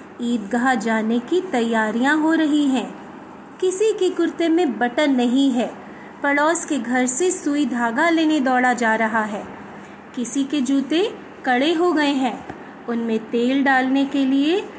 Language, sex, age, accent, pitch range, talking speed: Hindi, female, 30-49, native, 245-325 Hz, 150 wpm